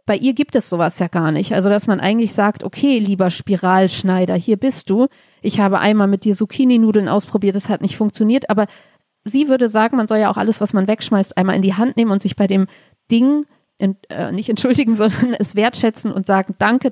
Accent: German